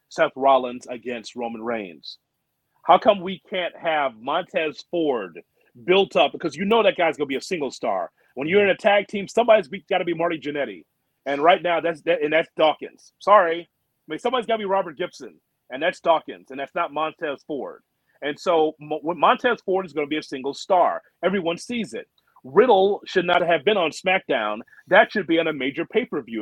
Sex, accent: male, American